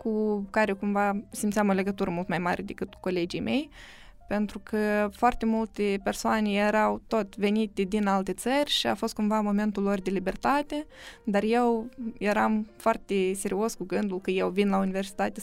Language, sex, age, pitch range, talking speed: Romanian, female, 20-39, 195-230 Hz, 170 wpm